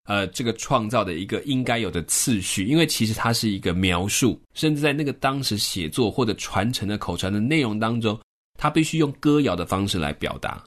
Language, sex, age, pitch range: Chinese, male, 20-39, 100-145 Hz